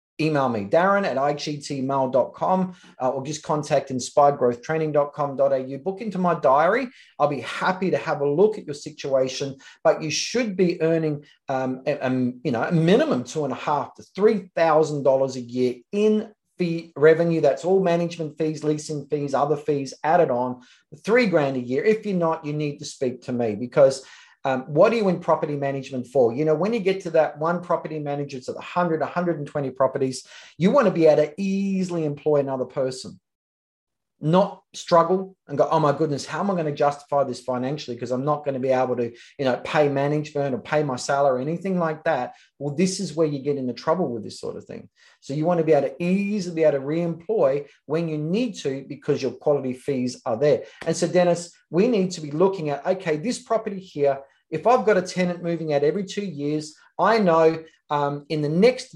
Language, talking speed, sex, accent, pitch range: English, 210 wpm, male, Australian, 140-175 Hz